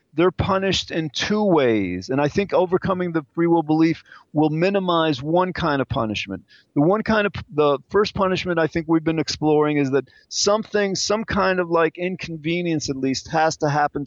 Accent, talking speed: American, 190 wpm